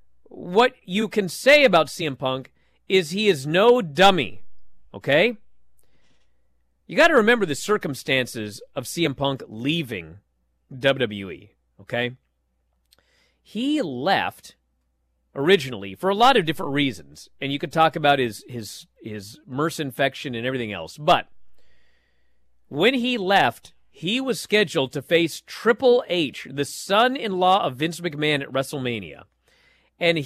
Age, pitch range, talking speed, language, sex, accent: 40-59, 130-210 Hz, 135 wpm, English, male, American